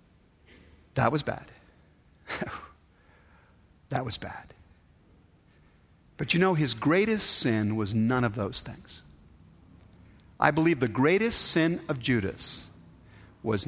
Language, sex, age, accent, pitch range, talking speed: English, male, 50-69, American, 80-130 Hz, 110 wpm